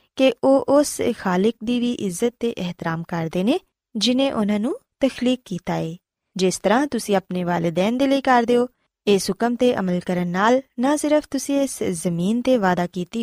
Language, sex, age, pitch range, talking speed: Punjabi, female, 20-39, 185-255 Hz, 175 wpm